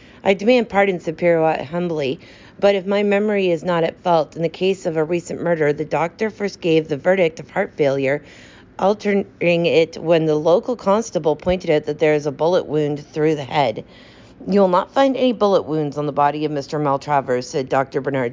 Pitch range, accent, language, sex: 145-185 Hz, American, English, female